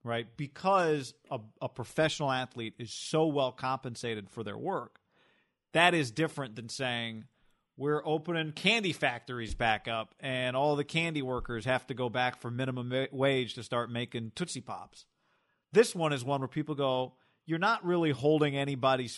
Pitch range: 120-150 Hz